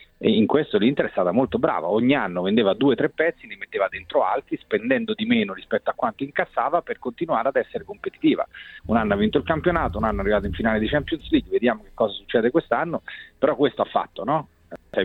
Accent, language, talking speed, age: native, Italian, 225 wpm, 40-59